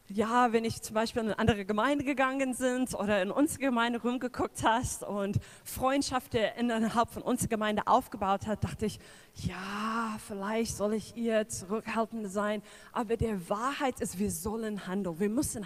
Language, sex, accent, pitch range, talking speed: German, female, German, 180-230 Hz, 165 wpm